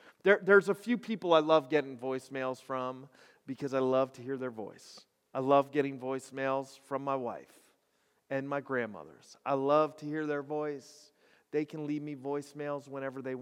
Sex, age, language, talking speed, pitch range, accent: male, 40-59, English, 175 wpm, 135-170 Hz, American